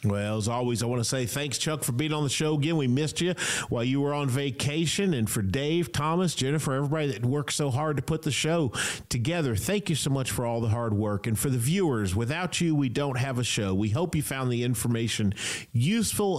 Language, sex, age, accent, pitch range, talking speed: English, male, 40-59, American, 125-170 Hz, 240 wpm